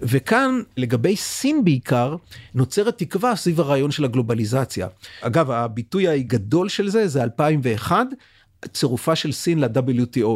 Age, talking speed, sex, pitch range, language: 50-69, 120 wpm, male, 135-195 Hz, Hebrew